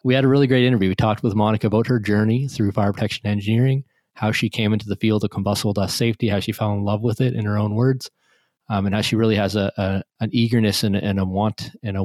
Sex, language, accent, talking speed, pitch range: male, English, American, 270 wpm, 100-115 Hz